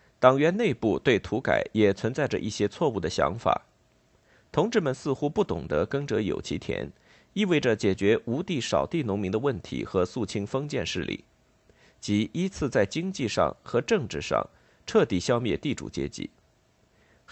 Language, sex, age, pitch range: Chinese, male, 50-69, 105-150 Hz